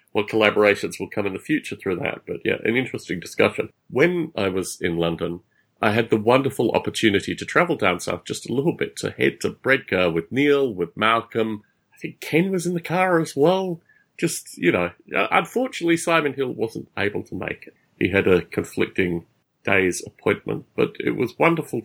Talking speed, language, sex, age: 190 wpm, English, male, 40-59